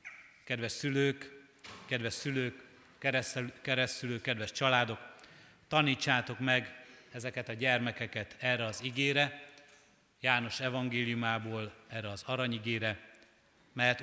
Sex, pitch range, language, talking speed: male, 115-135 Hz, Hungarian, 90 wpm